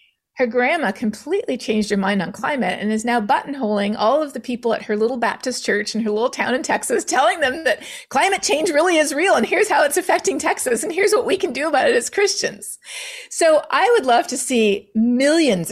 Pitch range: 210-280 Hz